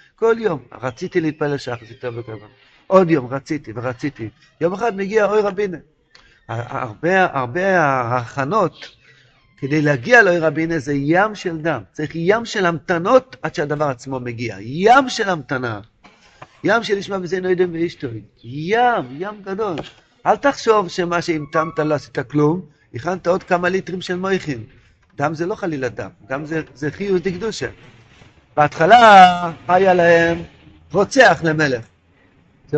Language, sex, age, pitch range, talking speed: Hebrew, male, 50-69, 130-175 Hz, 140 wpm